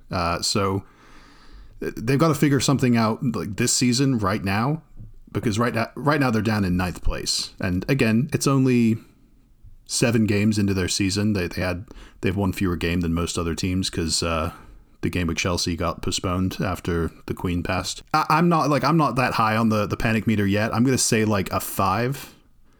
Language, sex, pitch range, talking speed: English, male, 95-125 Hz, 200 wpm